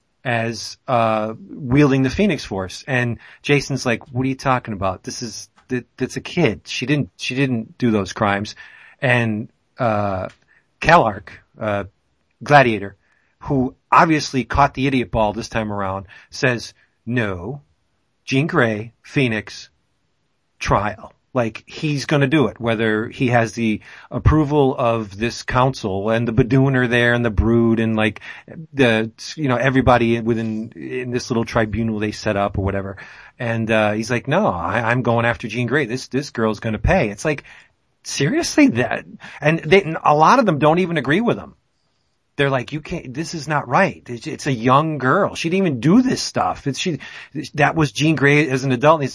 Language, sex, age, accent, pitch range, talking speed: English, male, 40-59, American, 110-140 Hz, 175 wpm